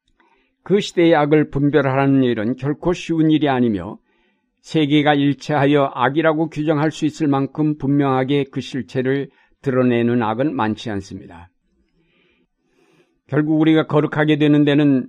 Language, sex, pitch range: Korean, male, 130-155 Hz